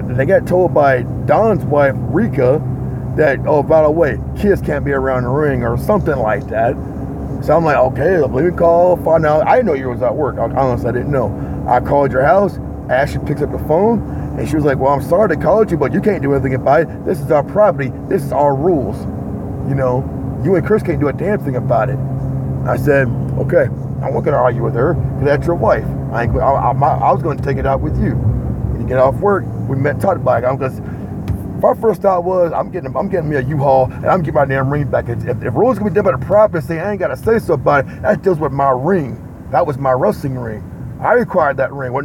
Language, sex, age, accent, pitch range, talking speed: English, male, 30-49, American, 130-170 Hz, 255 wpm